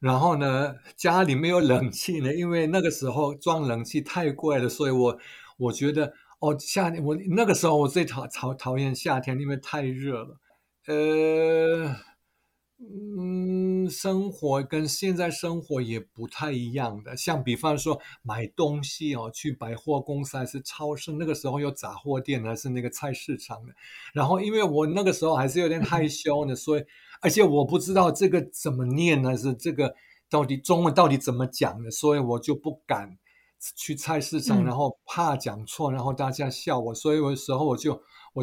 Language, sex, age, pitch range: Chinese, male, 60-79, 130-160 Hz